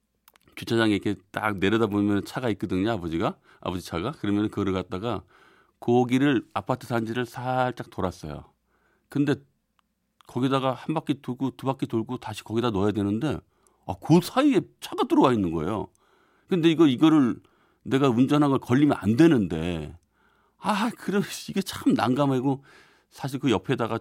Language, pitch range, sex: Korean, 95-140 Hz, male